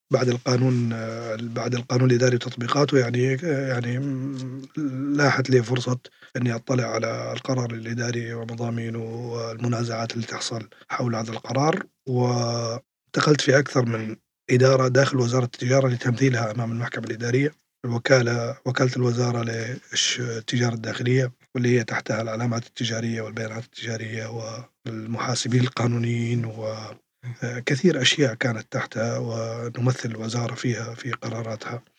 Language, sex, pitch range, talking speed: Arabic, male, 115-130 Hz, 110 wpm